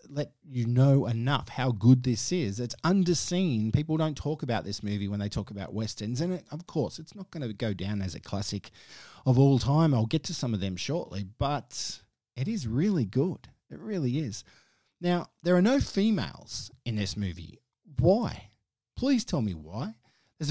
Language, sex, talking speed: English, male, 190 wpm